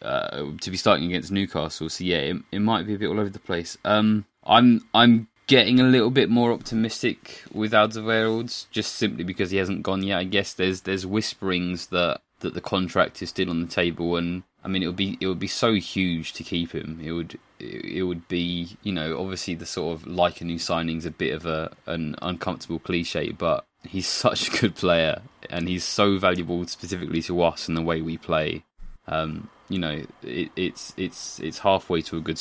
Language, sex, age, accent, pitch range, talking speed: English, male, 20-39, British, 85-100 Hz, 215 wpm